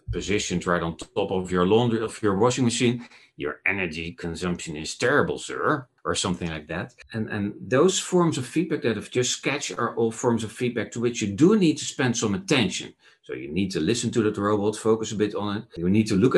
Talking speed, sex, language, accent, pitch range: 225 wpm, male, English, Dutch, 90-120 Hz